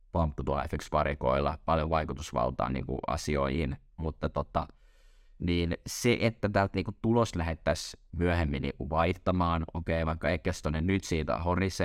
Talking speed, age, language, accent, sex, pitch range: 130 wpm, 20-39, Finnish, native, male, 75-90 Hz